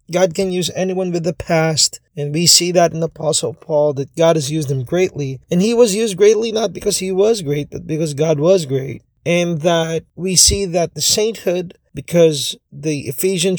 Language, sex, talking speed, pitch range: Filipino, male, 200 wpm, 150-185 Hz